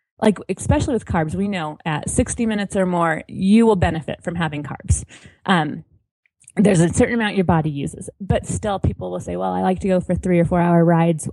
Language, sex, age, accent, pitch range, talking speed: English, female, 20-39, American, 170-205 Hz, 215 wpm